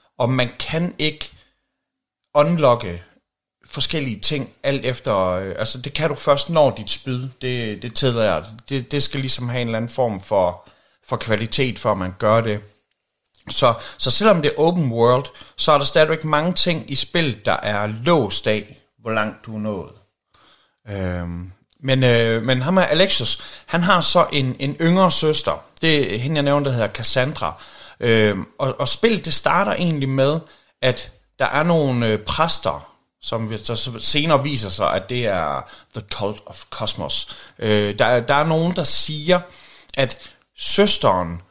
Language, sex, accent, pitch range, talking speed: Danish, male, native, 110-150 Hz, 170 wpm